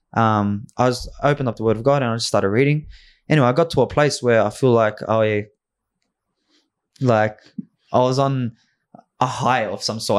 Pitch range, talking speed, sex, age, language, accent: 100-120 Hz, 205 wpm, male, 20-39, English, Australian